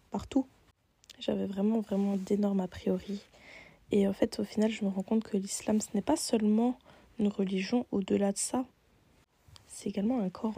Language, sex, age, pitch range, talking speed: French, female, 20-39, 195-225 Hz, 175 wpm